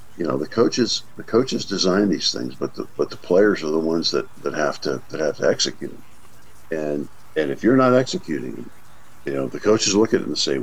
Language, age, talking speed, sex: English, 50-69, 230 wpm, male